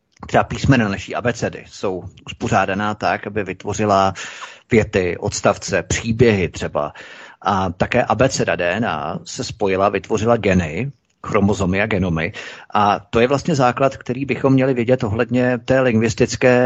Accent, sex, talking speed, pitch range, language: native, male, 135 wpm, 105-125 Hz, Czech